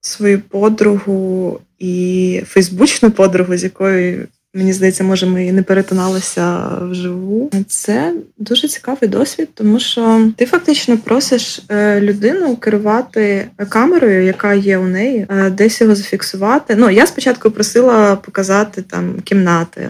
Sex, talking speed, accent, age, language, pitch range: female, 125 wpm, native, 20-39, Ukrainian, 185-220 Hz